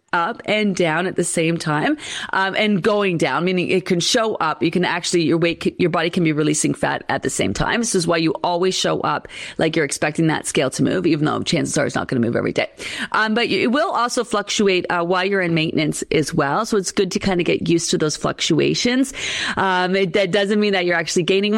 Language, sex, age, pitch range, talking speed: English, female, 30-49, 160-210 Hz, 250 wpm